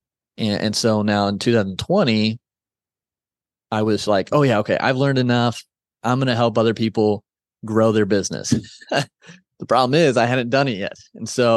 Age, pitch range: 20-39, 105-125 Hz